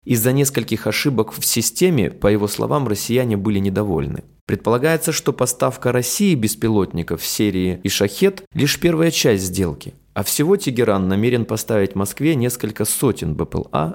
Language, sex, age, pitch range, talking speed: Russian, male, 20-39, 105-140 Hz, 140 wpm